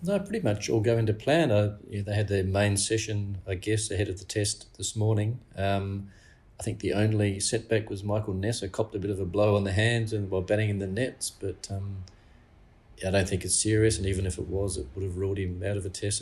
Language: English